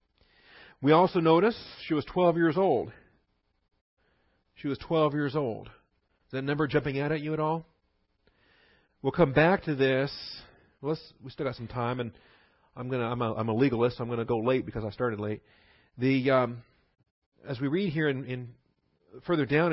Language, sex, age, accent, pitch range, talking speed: English, male, 40-59, American, 115-150 Hz, 180 wpm